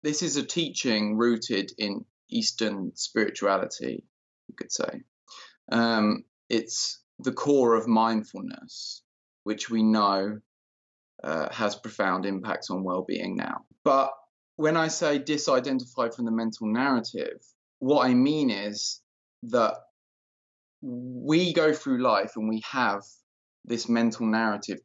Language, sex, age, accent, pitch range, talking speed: English, male, 20-39, British, 110-135 Hz, 125 wpm